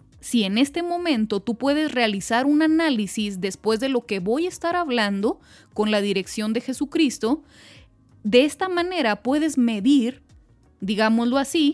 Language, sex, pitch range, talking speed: Spanish, female, 220-290 Hz, 150 wpm